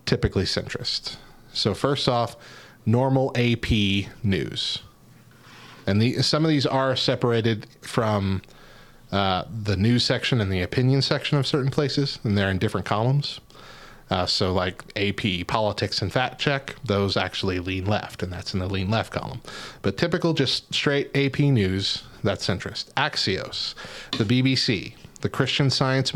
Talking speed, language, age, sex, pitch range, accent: 145 wpm, English, 30-49, male, 105-135 Hz, American